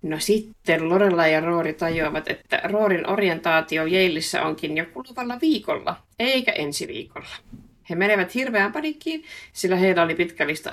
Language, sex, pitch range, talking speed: Finnish, female, 160-220 Hz, 145 wpm